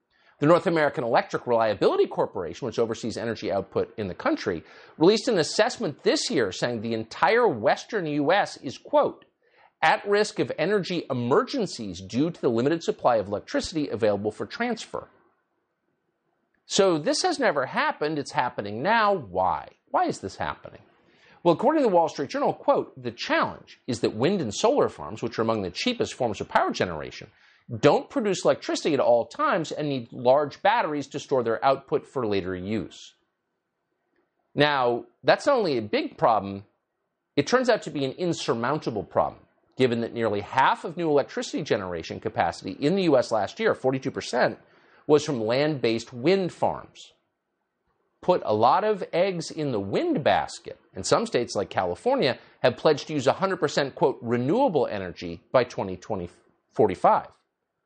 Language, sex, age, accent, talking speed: English, male, 50-69, American, 160 wpm